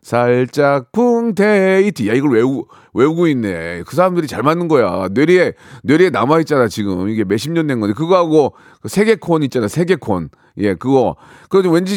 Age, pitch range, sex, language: 40-59, 115-175 Hz, male, Korean